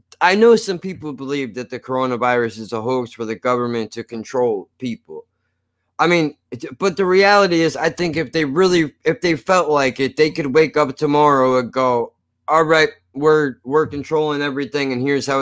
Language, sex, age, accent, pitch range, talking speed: English, male, 20-39, American, 130-170 Hz, 190 wpm